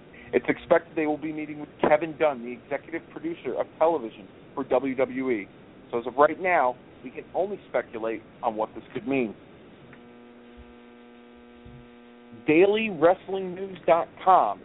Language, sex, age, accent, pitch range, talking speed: English, male, 40-59, American, 120-170 Hz, 125 wpm